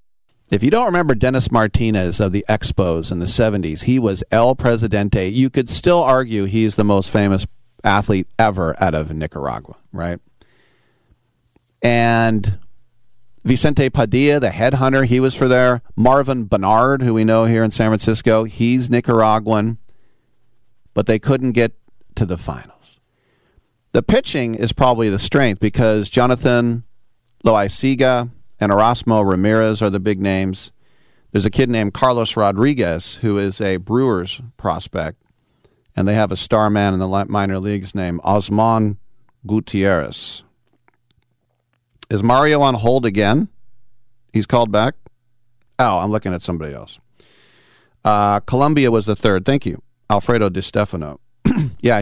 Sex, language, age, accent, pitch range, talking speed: male, English, 40-59, American, 100-120 Hz, 140 wpm